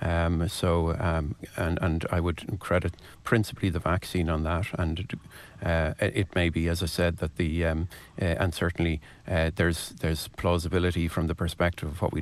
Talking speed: 180 wpm